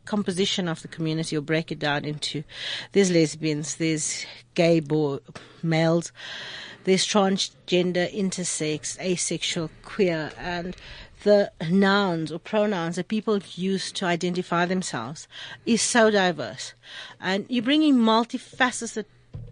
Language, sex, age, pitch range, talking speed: English, female, 40-59, 170-220 Hz, 115 wpm